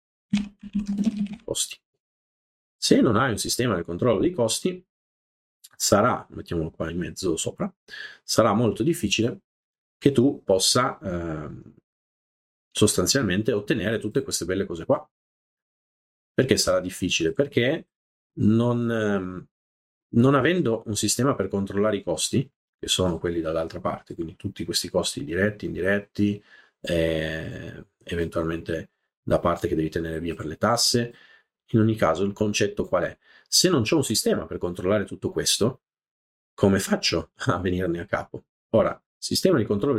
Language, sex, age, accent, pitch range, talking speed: Italian, male, 30-49, native, 85-115 Hz, 140 wpm